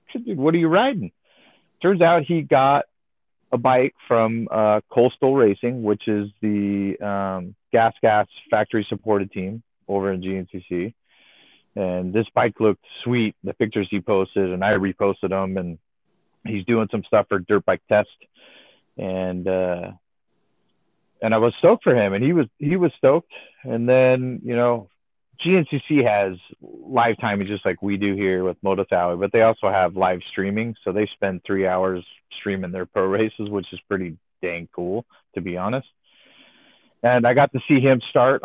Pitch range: 95-120 Hz